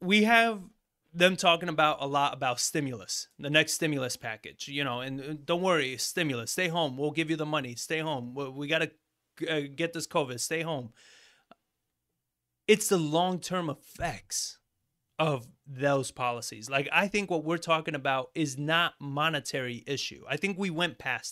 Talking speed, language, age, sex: 170 wpm, English, 20-39, male